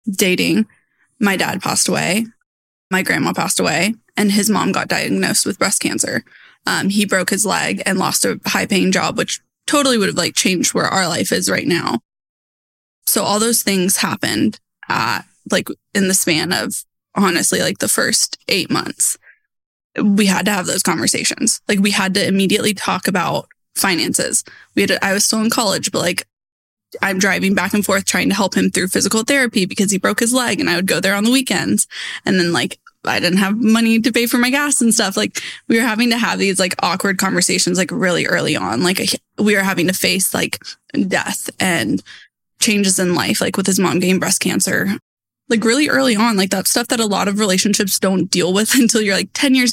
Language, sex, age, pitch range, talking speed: English, female, 10-29, 190-230 Hz, 210 wpm